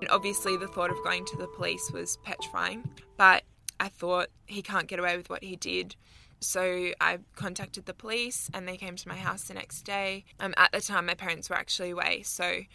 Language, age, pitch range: English, 10-29, 175-195 Hz